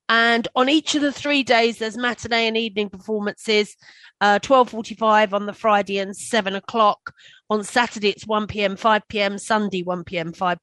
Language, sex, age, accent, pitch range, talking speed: English, female, 40-59, British, 200-250 Hz, 175 wpm